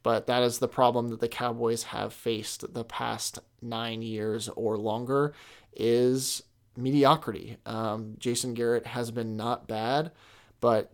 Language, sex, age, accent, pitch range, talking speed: English, male, 30-49, American, 115-125 Hz, 145 wpm